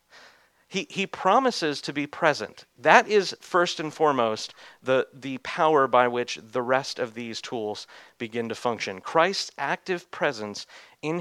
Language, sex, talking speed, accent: English, male, 150 wpm, American